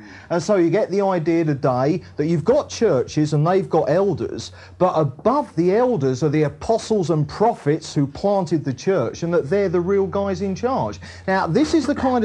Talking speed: 200 wpm